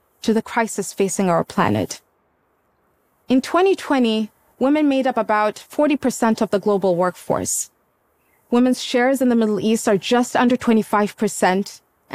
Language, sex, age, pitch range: Japanese, female, 20-39, 210-260 Hz